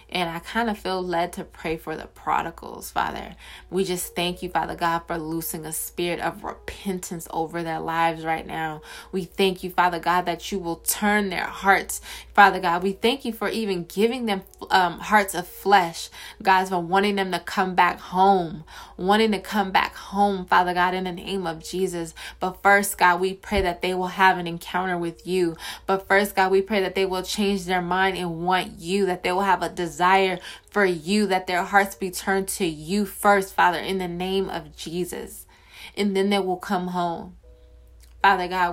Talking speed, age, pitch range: 200 wpm, 20-39, 175-195 Hz